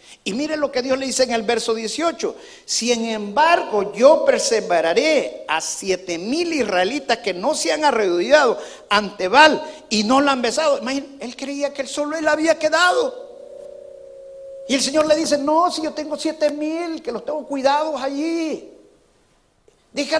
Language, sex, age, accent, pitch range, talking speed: Spanish, male, 50-69, Mexican, 240-300 Hz, 170 wpm